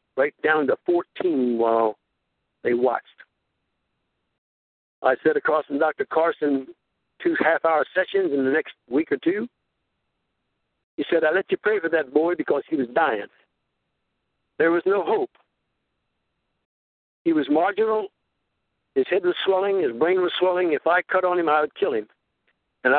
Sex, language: male, English